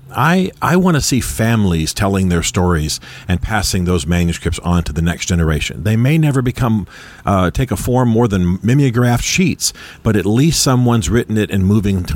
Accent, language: American, English